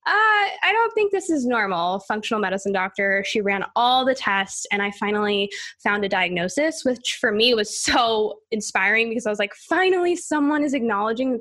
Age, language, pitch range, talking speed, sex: 10-29, English, 205-265 Hz, 190 wpm, female